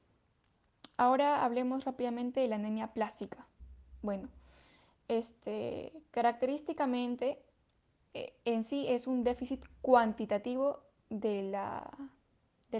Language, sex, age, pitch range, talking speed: Spanish, female, 10-29, 210-250 Hz, 95 wpm